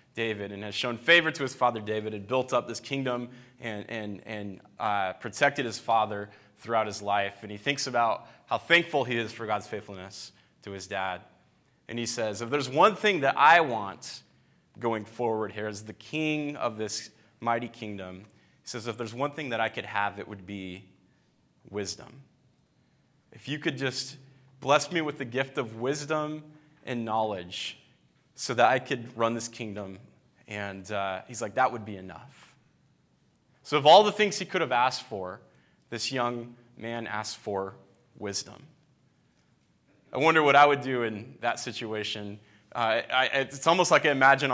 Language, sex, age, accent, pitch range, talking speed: English, male, 20-39, American, 105-140 Hz, 175 wpm